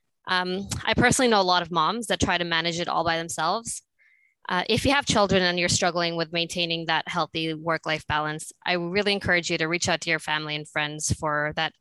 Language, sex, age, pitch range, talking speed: English, female, 20-39, 160-195 Hz, 225 wpm